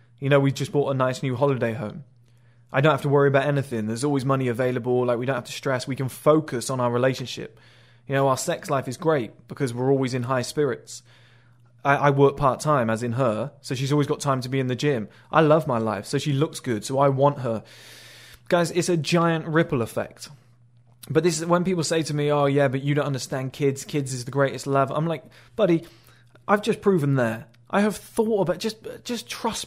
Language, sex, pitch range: English, male, 120-160 Hz